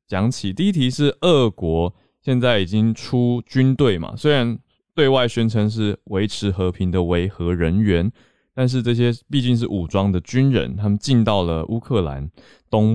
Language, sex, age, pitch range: Chinese, male, 20-39, 90-115 Hz